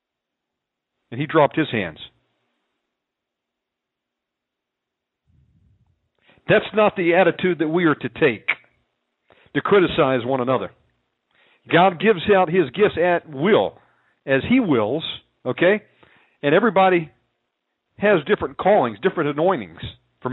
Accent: American